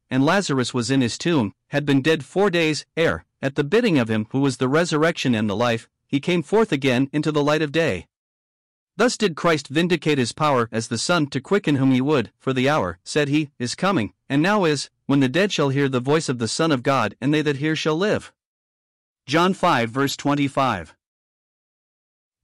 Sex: male